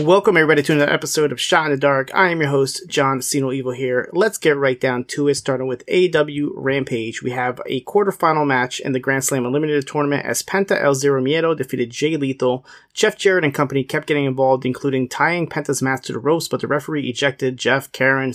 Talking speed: 215 wpm